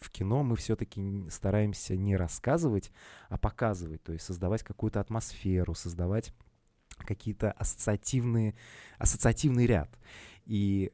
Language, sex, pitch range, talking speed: Russian, male, 90-110 Hz, 110 wpm